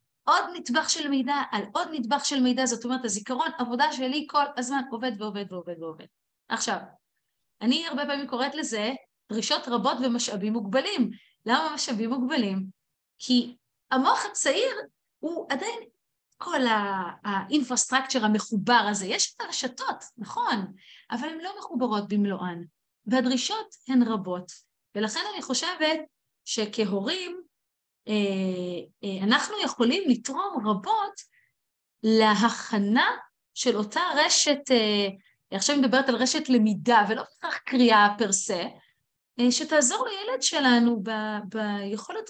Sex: female